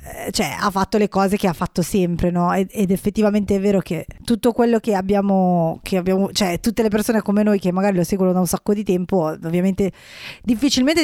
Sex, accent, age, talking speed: female, native, 20-39, 210 wpm